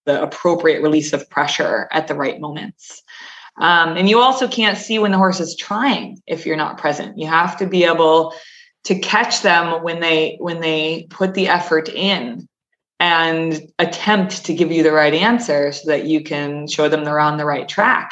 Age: 20-39